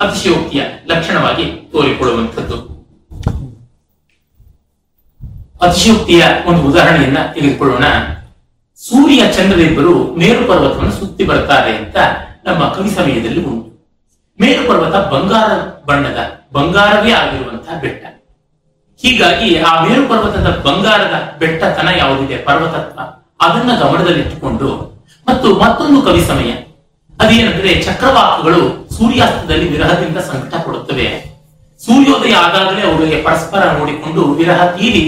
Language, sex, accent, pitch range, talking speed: Kannada, male, native, 140-195 Hz, 85 wpm